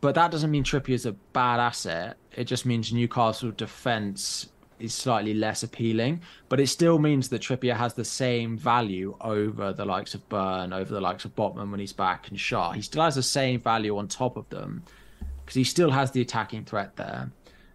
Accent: British